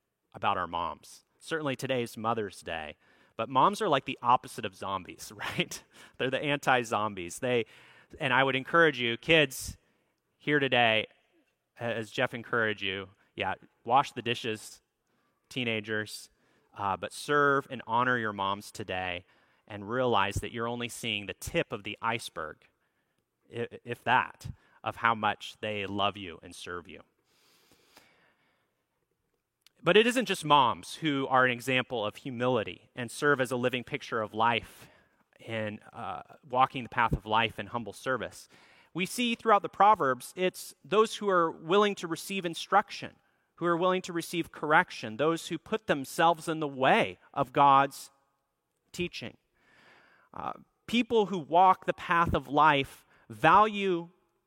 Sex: male